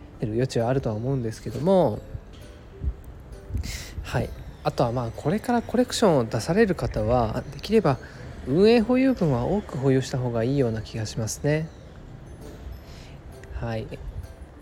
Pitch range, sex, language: 110-150 Hz, male, Japanese